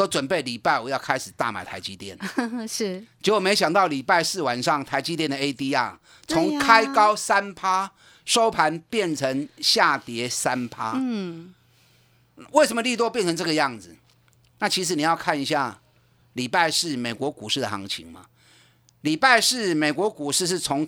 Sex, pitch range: male, 130-200 Hz